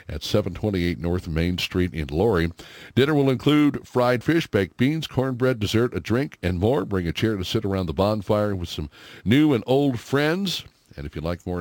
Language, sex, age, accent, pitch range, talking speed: English, male, 60-79, American, 85-125 Hz, 200 wpm